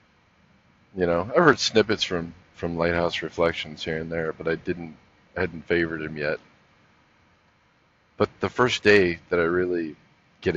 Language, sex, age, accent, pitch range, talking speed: English, male, 40-59, American, 90-110 Hz, 155 wpm